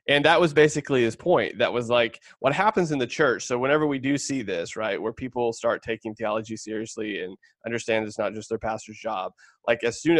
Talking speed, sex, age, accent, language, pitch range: 225 wpm, male, 20-39, American, English, 115-150 Hz